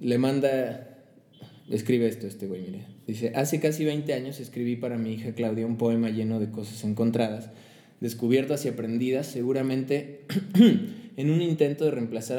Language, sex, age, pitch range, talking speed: Spanish, male, 20-39, 110-125 Hz, 155 wpm